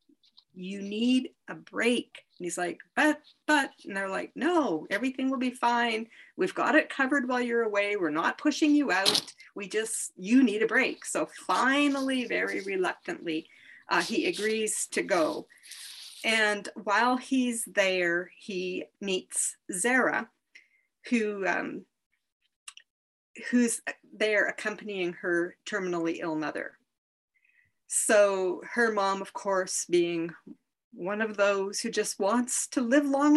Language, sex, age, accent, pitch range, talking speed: English, female, 40-59, American, 195-270 Hz, 135 wpm